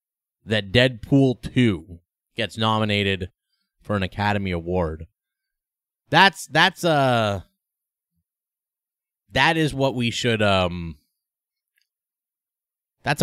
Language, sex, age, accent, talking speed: English, male, 30-49, American, 90 wpm